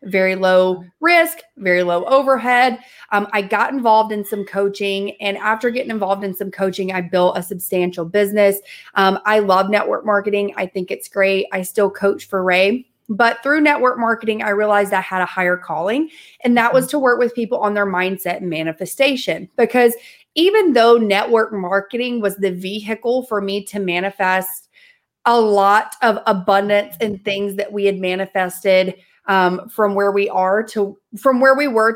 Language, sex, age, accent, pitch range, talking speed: English, female, 30-49, American, 190-225 Hz, 175 wpm